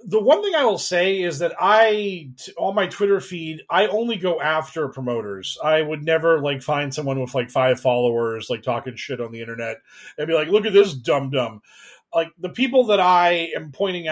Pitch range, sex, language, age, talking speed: 145-200 Hz, male, English, 30-49, 205 wpm